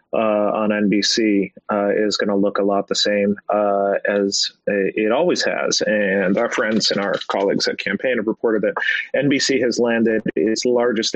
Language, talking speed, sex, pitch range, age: English, 175 wpm, male, 100-110 Hz, 30-49